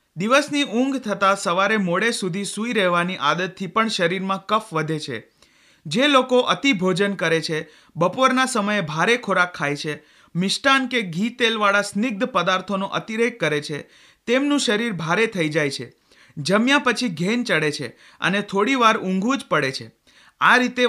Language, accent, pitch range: Hindi, native, 170-225 Hz